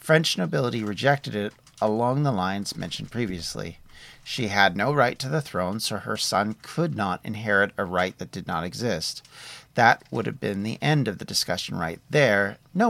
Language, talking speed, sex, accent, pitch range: English, 185 wpm, male, American, 100-135 Hz